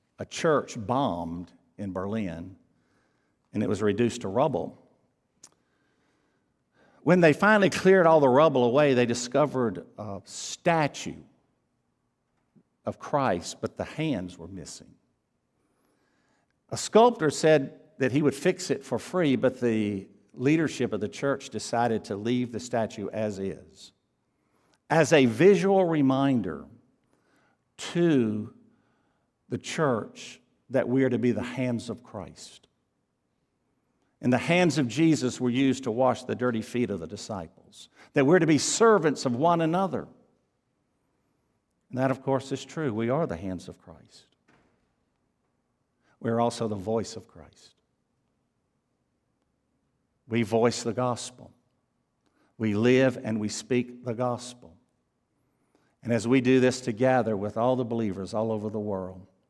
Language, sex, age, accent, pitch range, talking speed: English, male, 60-79, American, 110-135 Hz, 135 wpm